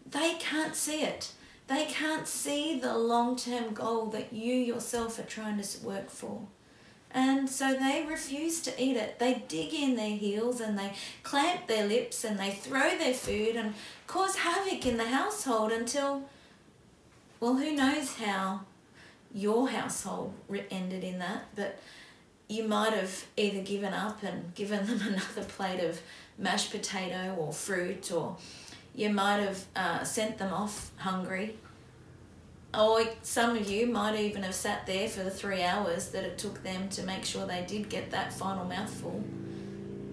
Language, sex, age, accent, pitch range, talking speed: English, female, 30-49, Australian, 195-245 Hz, 160 wpm